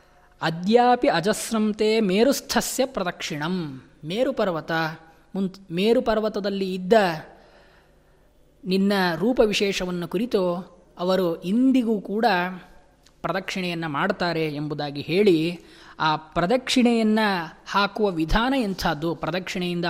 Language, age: Kannada, 20-39